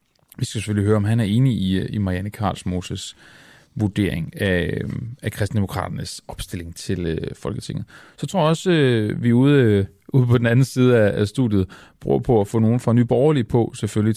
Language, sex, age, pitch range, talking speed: Danish, male, 30-49, 95-125 Hz, 180 wpm